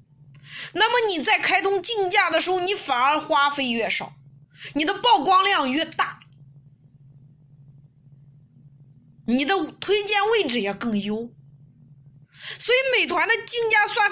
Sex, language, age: female, Chinese, 20-39